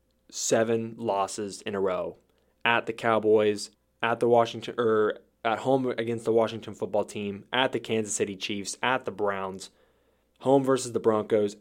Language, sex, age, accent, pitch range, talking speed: English, male, 20-39, American, 100-115 Hz, 160 wpm